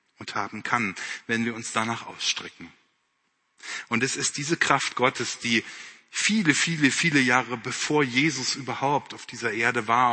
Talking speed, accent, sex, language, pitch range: 155 wpm, German, male, German, 115-150 Hz